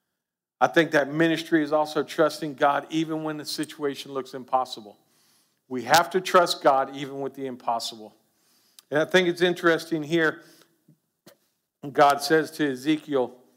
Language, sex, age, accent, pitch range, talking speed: English, male, 50-69, American, 150-200 Hz, 145 wpm